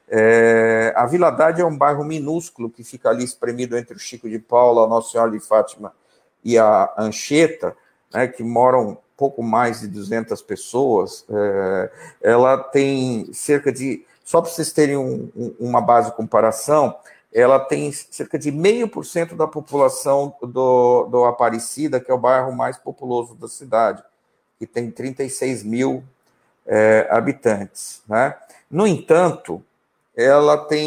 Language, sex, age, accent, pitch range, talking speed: Portuguese, male, 50-69, Brazilian, 120-160 Hz, 150 wpm